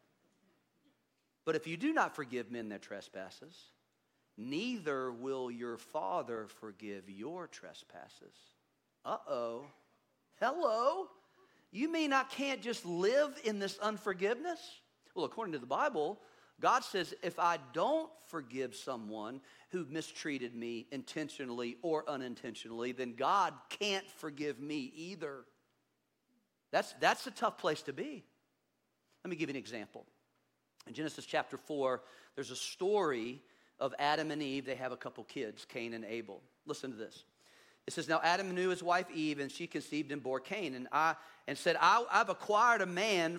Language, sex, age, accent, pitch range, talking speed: English, male, 50-69, American, 135-200 Hz, 150 wpm